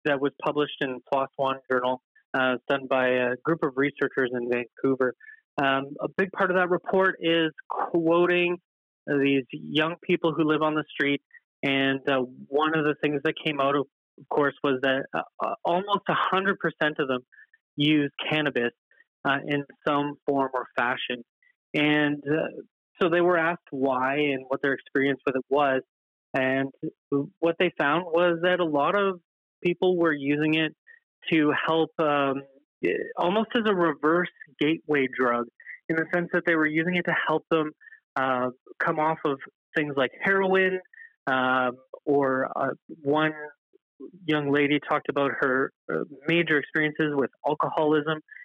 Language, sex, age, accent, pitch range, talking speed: English, male, 30-49, American, 135-170 Hz, 155 wpm